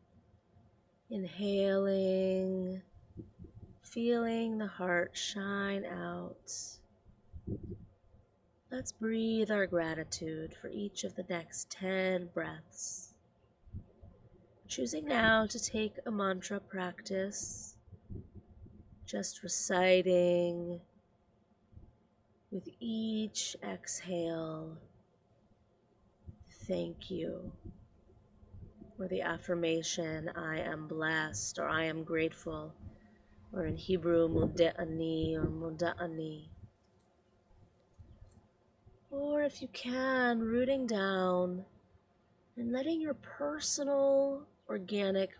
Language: English